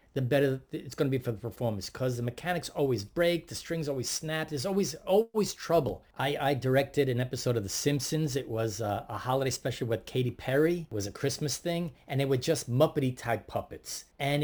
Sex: male